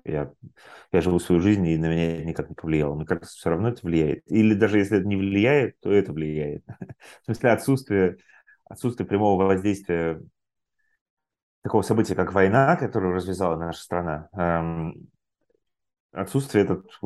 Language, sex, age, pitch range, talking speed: Russian, male, 30-49, 85-110 Hz, 145 wpm